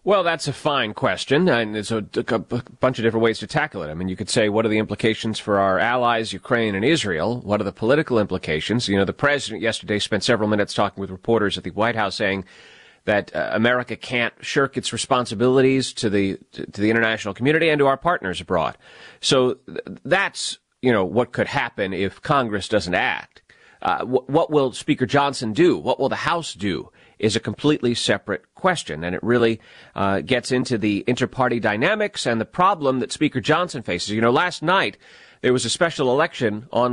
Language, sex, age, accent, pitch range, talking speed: English, male, 30-49, American, 110-140 Hz, 205 wpm